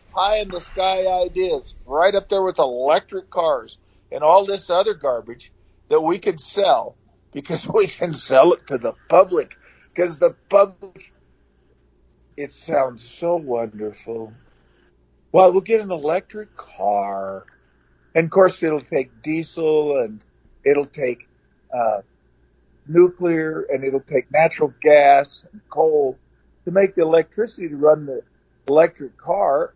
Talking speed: 130 wpm